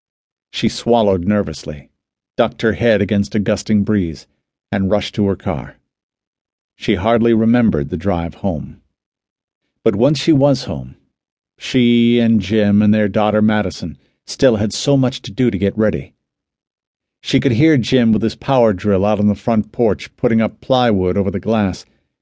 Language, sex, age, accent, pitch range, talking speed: English, male, 50-69, American, 100-120 Hz, 165 wpm